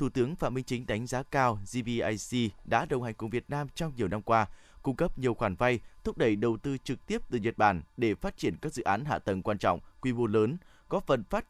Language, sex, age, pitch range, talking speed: Vietnamese, male, 20-39, 110-140 Hz, 255 wpm